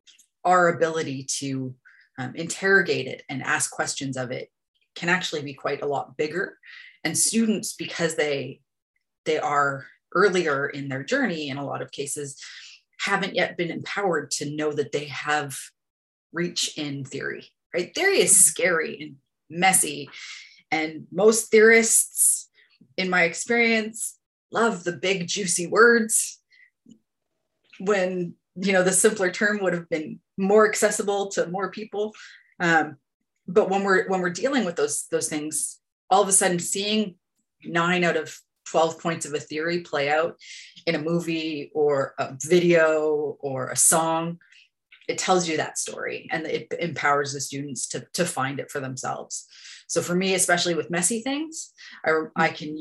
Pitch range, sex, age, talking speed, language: 145-195 Hz, female, 30-49, 155 wpm, English